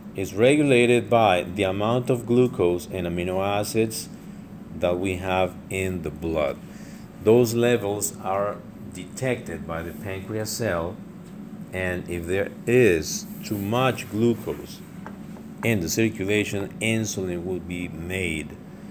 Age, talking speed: 50-69, 120 wpm